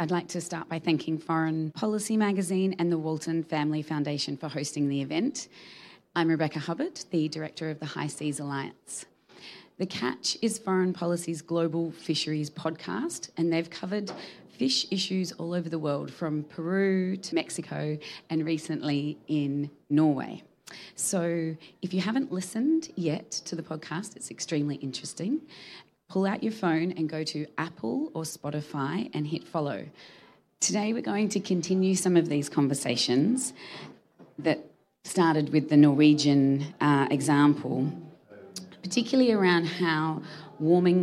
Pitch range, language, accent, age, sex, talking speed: 150-185 Hz, English, Australian, 30-49, female, 145 wpm